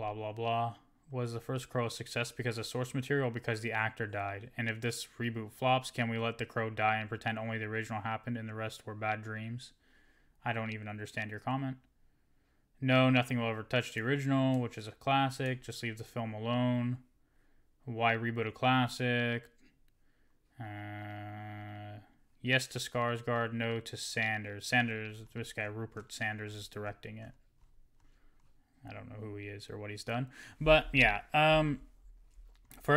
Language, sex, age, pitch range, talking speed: English, male, 10-29, 110-125 Hz, 175 wpm